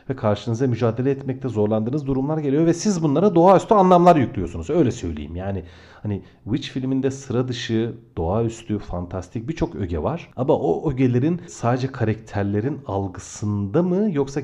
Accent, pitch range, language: native, 100-135 Hz, Turkish